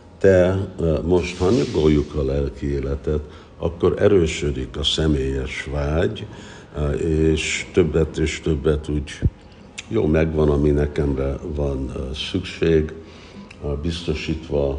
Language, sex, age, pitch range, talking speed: Hungarian, male, 60-79, 70-90 Hz, 95 wpm